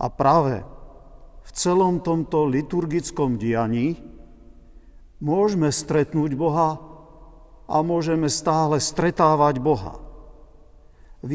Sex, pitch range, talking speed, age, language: male, 125-170 Hz, 85 wpm, 50-69, Slovak